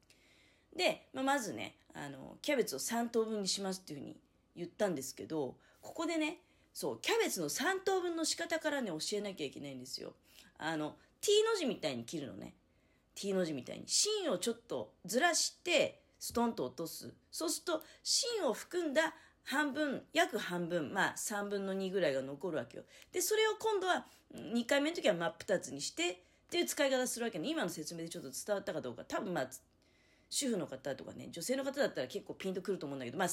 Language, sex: Japanese, female